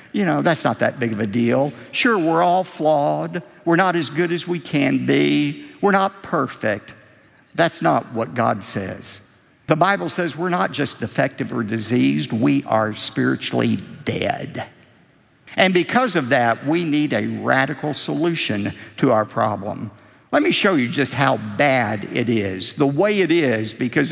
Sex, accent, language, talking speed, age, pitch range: male, American, English, 170 wpm, 50-69, 125-205 Hz